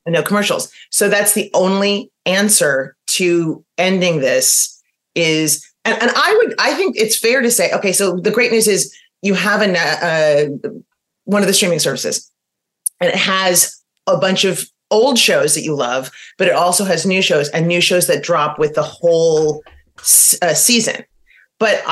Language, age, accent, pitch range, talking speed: English, 30-49, American, 155-205 Hz, 180 wpm